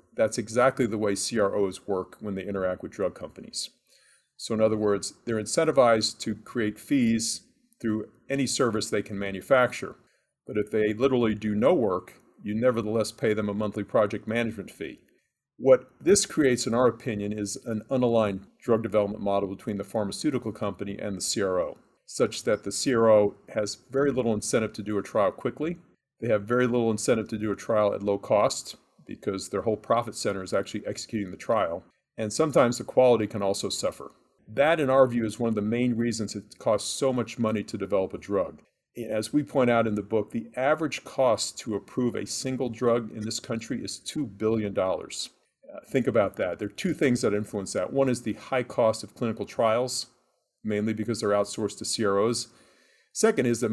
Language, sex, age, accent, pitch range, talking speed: English, male, 40-59, American, 105-125 Hz, 190 wpm